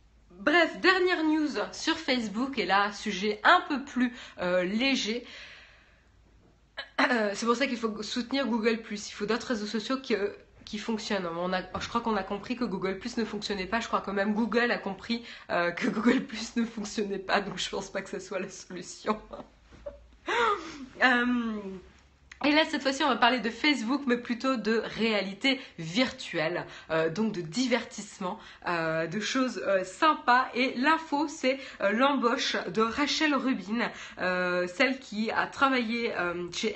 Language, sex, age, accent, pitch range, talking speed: French, female, 20-39, French, 195-260 Hz, 165 wpm